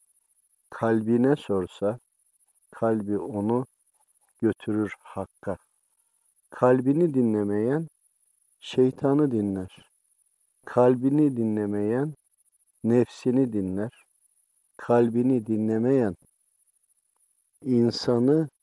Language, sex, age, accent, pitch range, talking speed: Turkish, male, 50-69, native, 100-125 Hz, 55 wpm